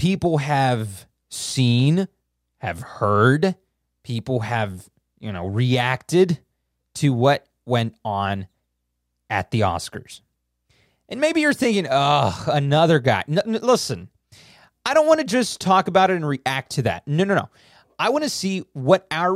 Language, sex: English, male